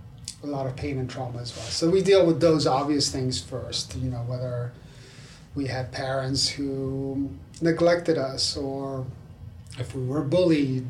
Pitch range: 125-145 Hz